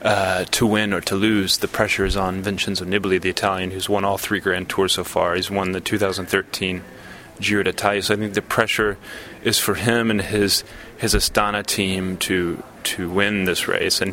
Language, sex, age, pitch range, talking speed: English, male, 30-49, 95-105 Hz, 200 wpm